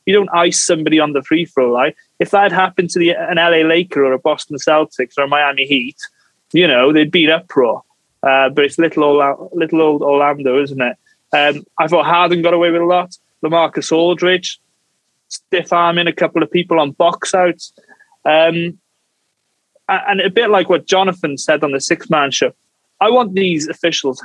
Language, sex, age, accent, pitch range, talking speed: English, male, 20-39, British, 155-190 Hz, 195 wpm